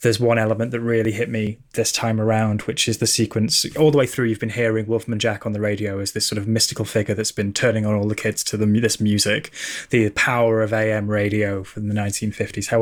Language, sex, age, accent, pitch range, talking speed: English, male, 20-39, British, 105-115 Hz, 245 wpm